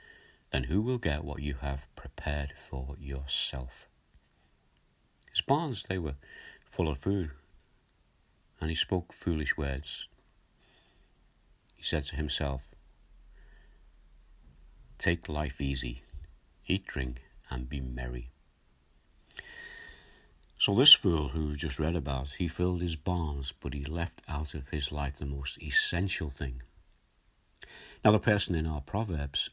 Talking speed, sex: 125 wpm, male